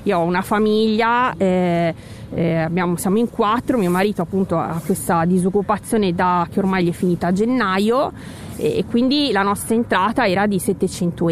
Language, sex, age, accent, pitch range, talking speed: Italian, female, 30-49, native, 180-220 Hz, 175 wpm